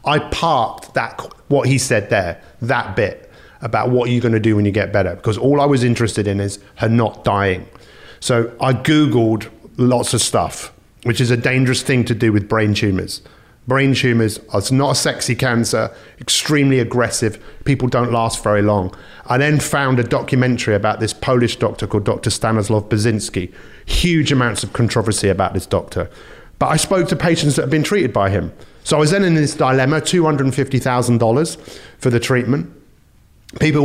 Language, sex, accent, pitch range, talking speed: English, male, British, 110-130 Hz, 180 wpm